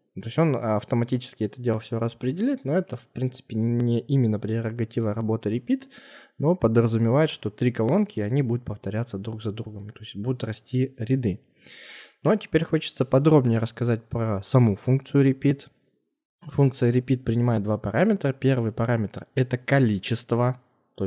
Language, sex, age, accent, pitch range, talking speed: Russian, male, 20-39, native, 110-140 Hz, 150 wpm